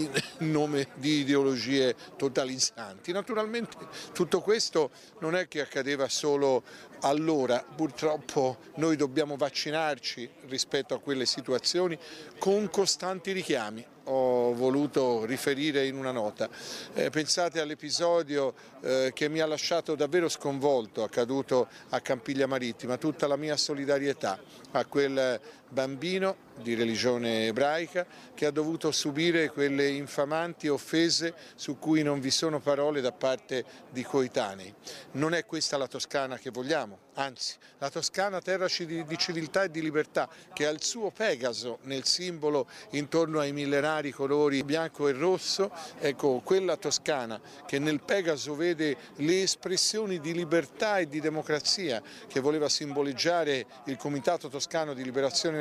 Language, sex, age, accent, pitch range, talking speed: Italian, male, 50-69, native, 140-170 Hz, 135 wpm